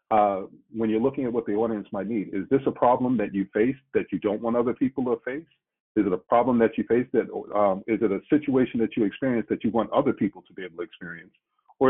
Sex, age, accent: male, 50-69, American